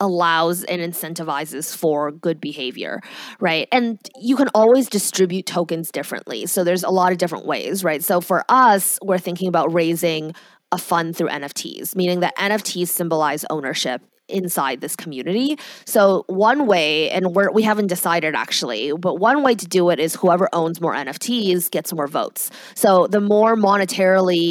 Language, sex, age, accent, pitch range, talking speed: English, female, 20-39, American, 170-210 Hz, 165 wpm